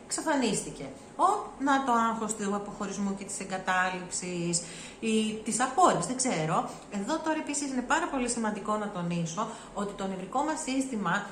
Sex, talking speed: female, 155 wpm